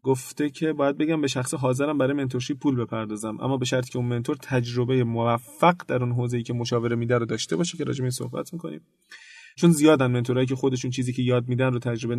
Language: Persian